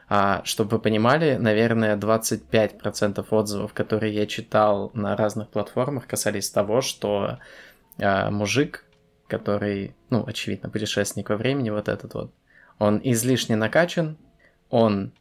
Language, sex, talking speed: Russian, male, 120 wpm